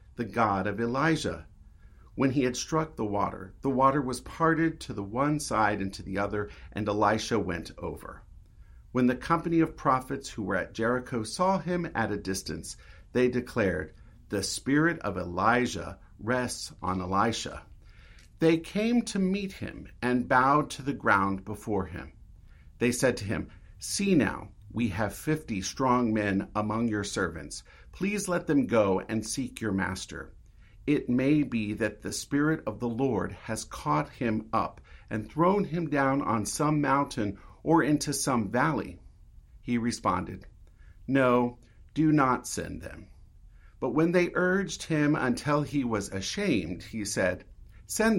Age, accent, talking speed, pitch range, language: 50-69, American, 155 wpm, 95-145 Hz, English